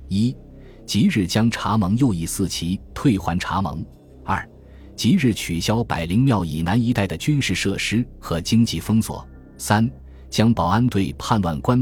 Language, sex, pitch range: Chinese, male, 80-115 Hz